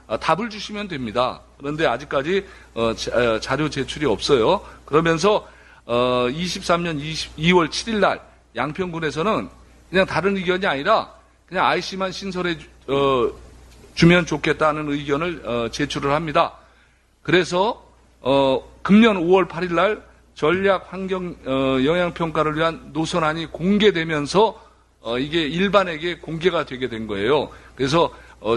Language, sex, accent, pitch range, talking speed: English, male, Korean, 135-185 Hz, 115 wpm